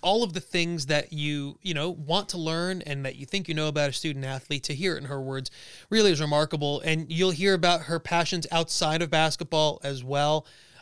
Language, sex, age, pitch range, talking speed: English, male, 30-49, 145-175 Hz, 225 wpm